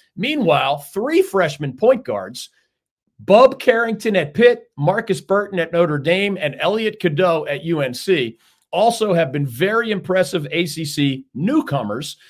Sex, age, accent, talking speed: male, 40-59, American, 125 wpm